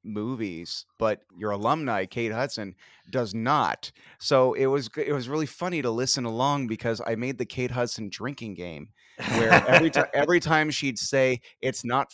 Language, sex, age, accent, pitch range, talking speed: English, male, 30-49, American, 105-130 Hz, 170 wpm